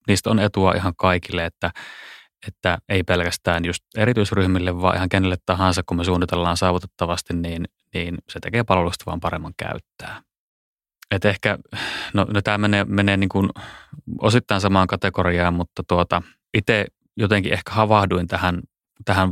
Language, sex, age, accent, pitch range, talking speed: Finnish, male, 20-39, native, 90-100 Hz, 145 wpm